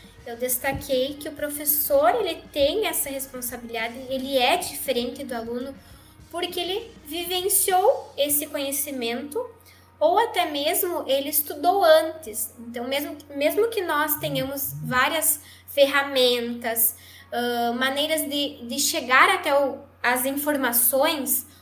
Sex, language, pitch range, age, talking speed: female, Portuguese, 255-340 Hz, 10-29, 110 wpm